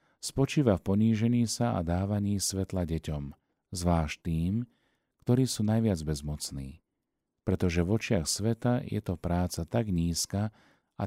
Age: 40-59